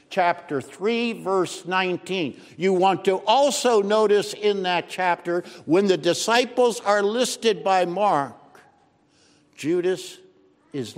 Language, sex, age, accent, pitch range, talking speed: English, male, 60-79, American, 140-205 Hz, 115 wpm